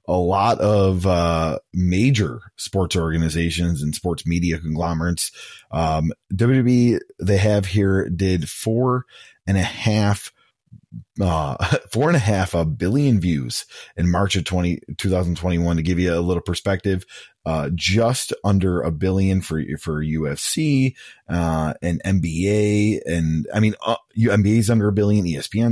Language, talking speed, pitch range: English, 145 wpm, 85-110 Hz